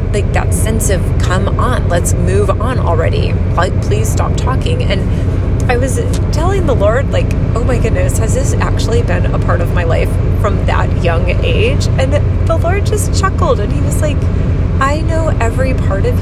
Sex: female